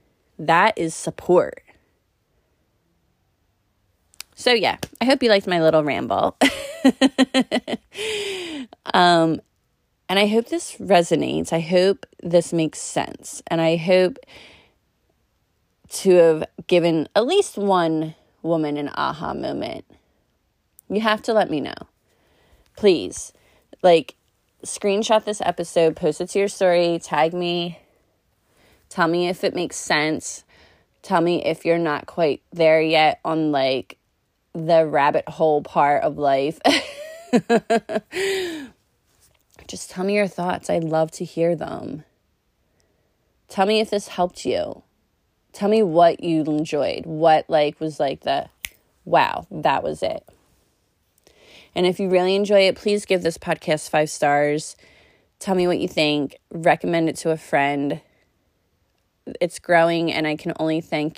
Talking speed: 130 wpm